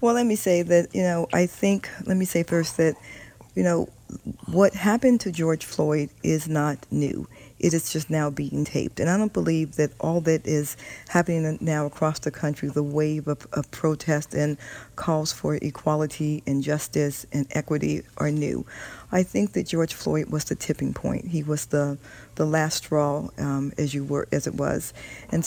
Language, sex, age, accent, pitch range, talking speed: English, female, 40-59, American, 145-165 Hz, 190 wpm